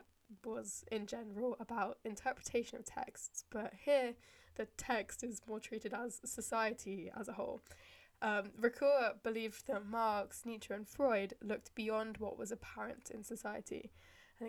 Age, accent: 10-29, British